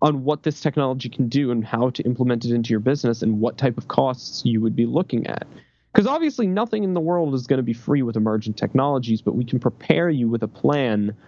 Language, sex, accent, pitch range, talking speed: English, male, American, 110-140 Hz, 245 wpm